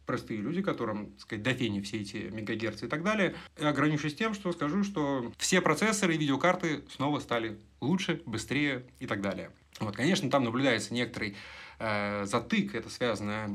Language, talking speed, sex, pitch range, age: Russian, 160 wpm, male, 100-145 Hz, 30-49